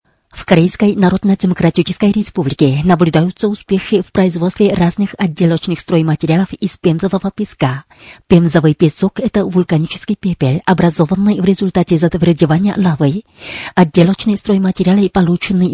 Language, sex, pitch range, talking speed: Russian, female, 170-200 Hz, 105 wpm